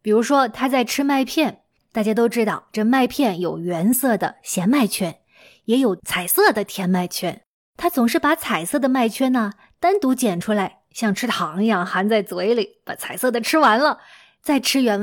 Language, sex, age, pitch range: Chinese, female, 20-39, 200-275 Hz